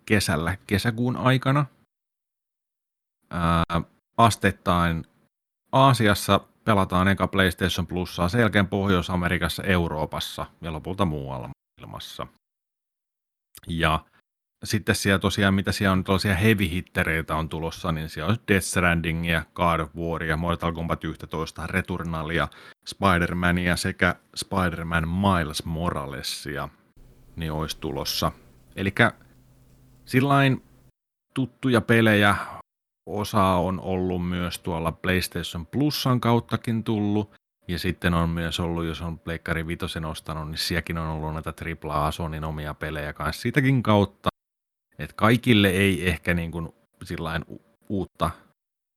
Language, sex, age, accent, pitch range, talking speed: Finnish, male, 30-49, native, 80-100 Hz, 110 wpm